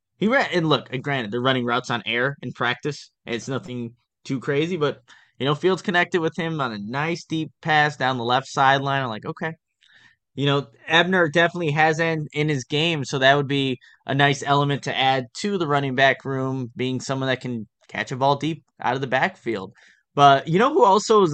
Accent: American